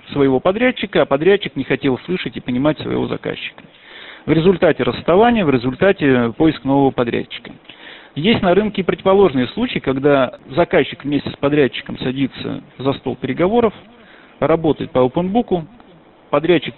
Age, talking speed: 40-59, 135 wpm